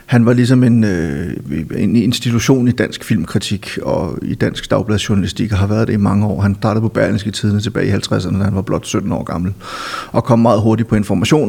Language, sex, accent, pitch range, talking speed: Danish, male, native, 105-120 Hz, 220 wpm